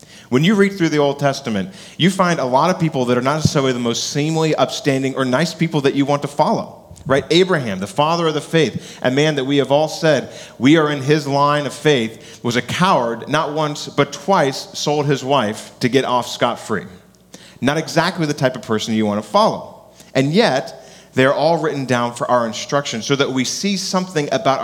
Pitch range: 100-145 Hz